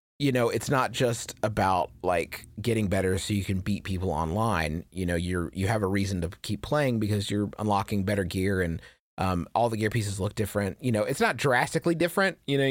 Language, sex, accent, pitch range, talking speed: English, male, American, 90-120 Hz, 215 wpm